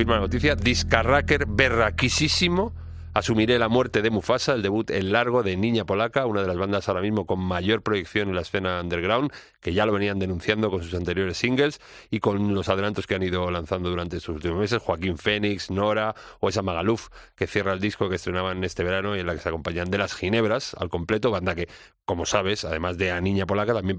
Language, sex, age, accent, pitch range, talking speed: Spanish, male, 40-59, Spanish, 95-110 Hz, 215 wpm